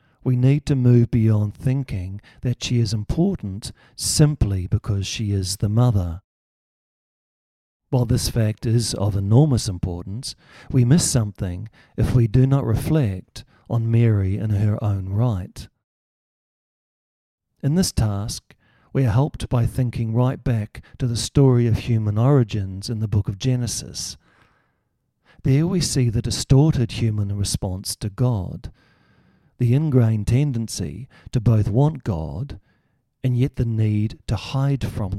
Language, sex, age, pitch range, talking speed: English, male, 50-69, 105-130 Hz, 140 wpm